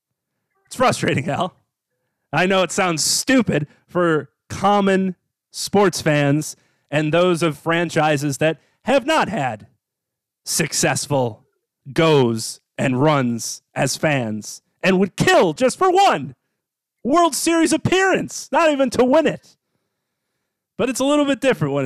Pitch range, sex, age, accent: 145-215 Hz, male, 30-49, American